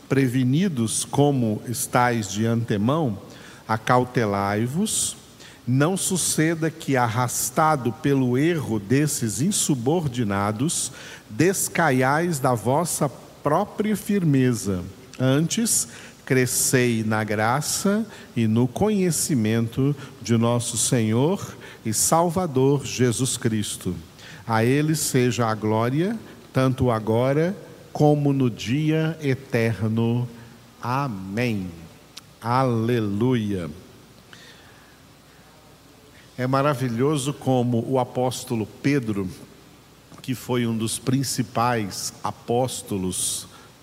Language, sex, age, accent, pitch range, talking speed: Portuguese, male, 50-69, Brazilian, 115-140 Hz, 80 wpm